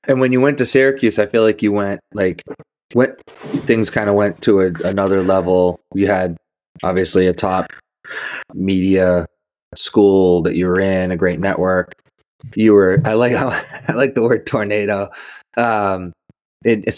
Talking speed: 150 wpm